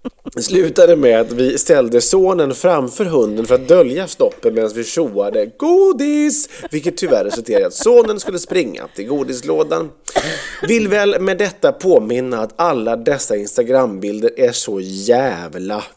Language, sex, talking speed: English, male, 145 wpm